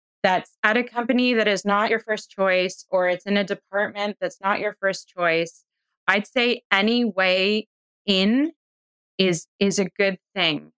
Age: 20-39